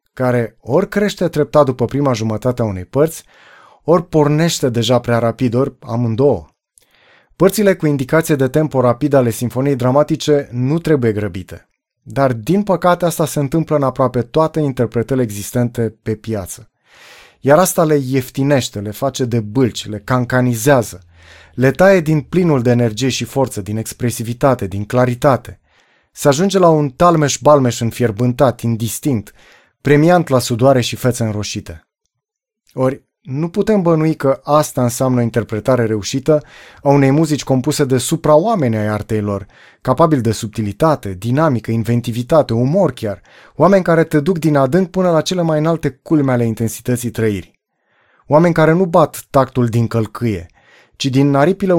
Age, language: 30-49, Romanian